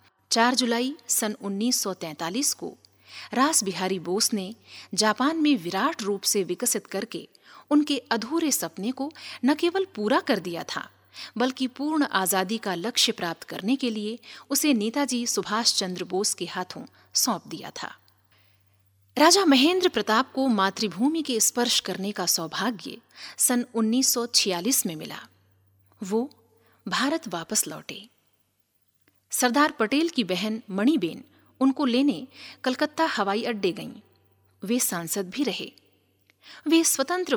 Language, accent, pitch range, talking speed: Hindi, native, 185-270 Hz, 130 wpm